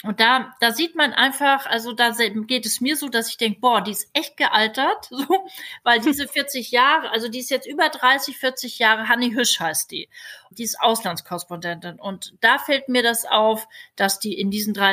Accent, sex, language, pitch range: German, female, German, 200-255 Hz